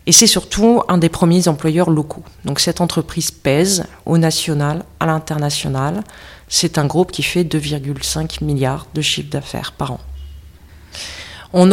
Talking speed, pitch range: 150 wpm, 150-185 Hz